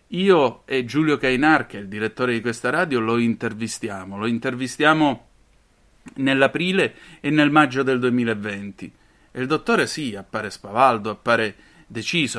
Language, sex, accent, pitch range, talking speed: Italian, male, native, 110-140 Hz, 140 wpm